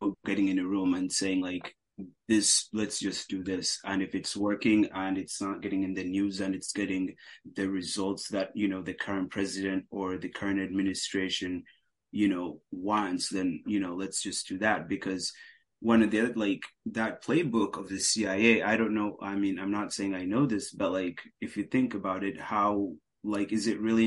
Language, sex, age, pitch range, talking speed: English, male, 30-49, 95-105 Hz, 205 wpm